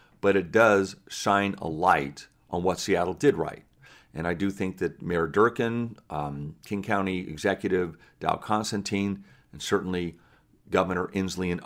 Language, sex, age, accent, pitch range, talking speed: English, male, 50-69, American, 90-110 Hz, 150 wpm